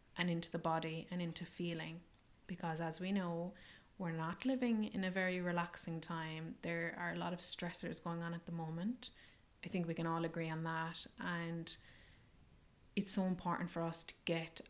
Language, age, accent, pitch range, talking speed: English, 20-39, Irish, 165-185 Hz, 190 wpm